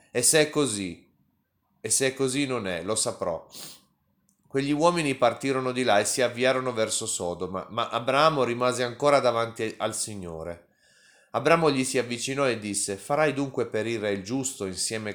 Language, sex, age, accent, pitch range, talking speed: Italian, male, 30-49, native, 100-140 Hz, 160 wpm